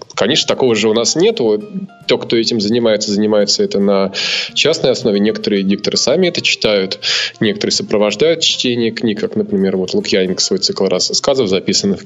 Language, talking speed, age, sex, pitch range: Russian, 165 wpm, 20-39, male, 100-140 Hz